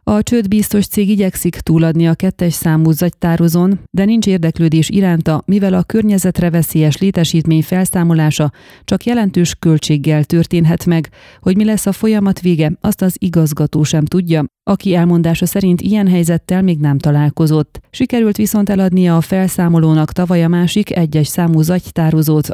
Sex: female